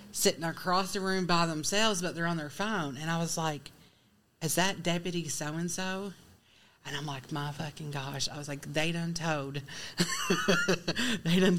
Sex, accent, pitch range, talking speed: female, American, 160-195 Hz, 175 wpm